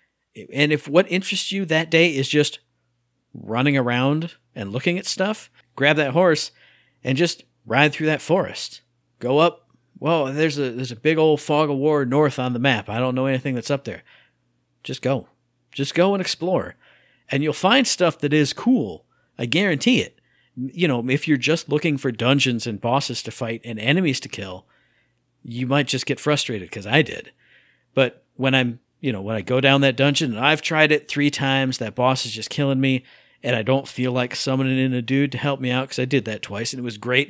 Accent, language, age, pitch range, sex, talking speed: American, English, 50-69, 125-150 Hz, male, 210 wpm